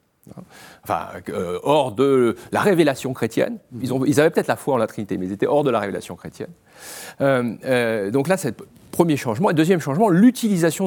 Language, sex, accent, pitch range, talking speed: French, male, French, 130-210 Hz, 210 wpm